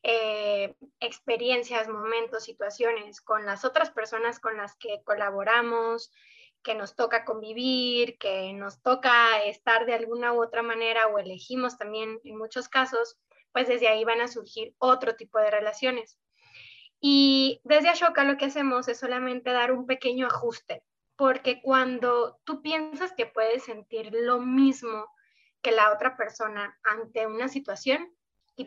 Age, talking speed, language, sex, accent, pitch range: 20-39, 145 wpm, Spanish, female, Mexican, 220-255 Hz